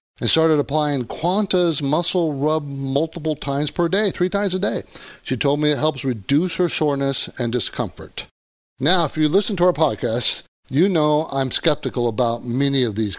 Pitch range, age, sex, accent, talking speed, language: 135-175 Hz, 50-69, male, American, 175 wpm, English